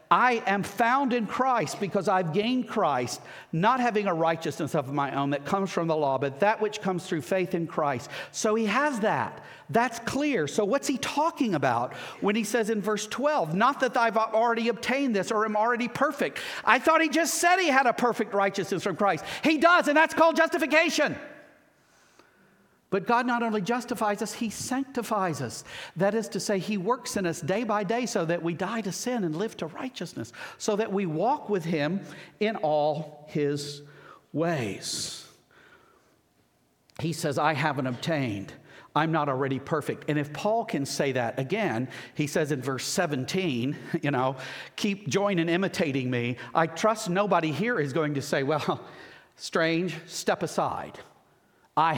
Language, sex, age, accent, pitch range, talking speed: English, male, 50-69, American, 155-235 Hz, 180 wpm